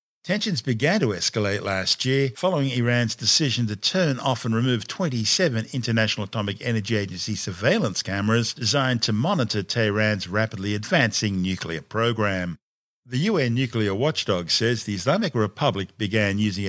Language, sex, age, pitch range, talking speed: English, male, 50-69, 105-135 Hz, 140 wpm